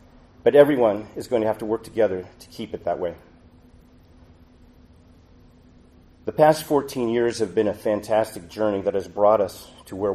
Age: 40-59